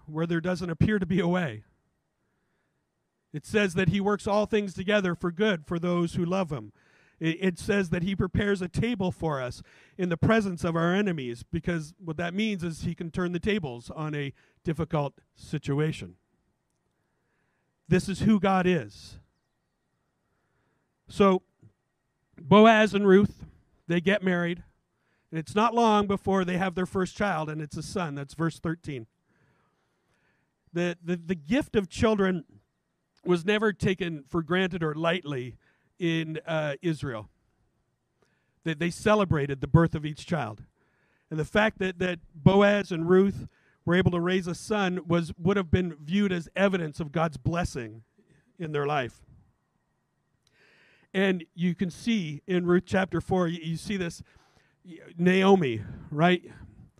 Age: 40-59